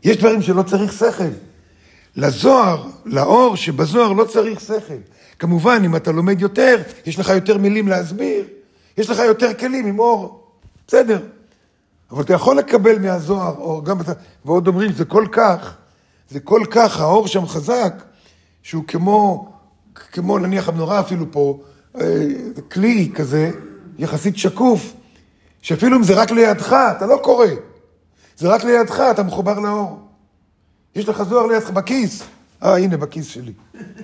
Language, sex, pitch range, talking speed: Hebrew, male, 150-220 Hz, 140 wpm